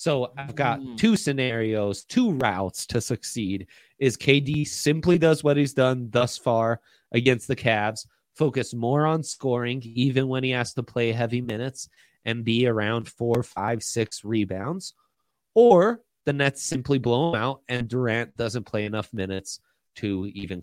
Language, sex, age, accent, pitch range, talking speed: English, male, 30-49, American, 115-155 Hz, 160 wpm